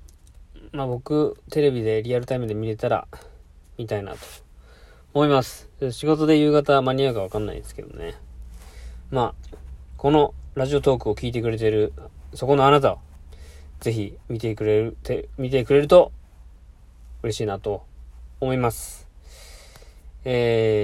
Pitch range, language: 105-140 Hz, Japanese